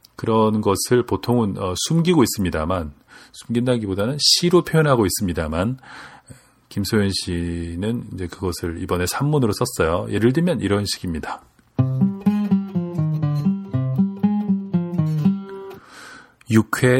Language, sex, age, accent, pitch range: Korean, male, 40-59, native, 100-130 Hz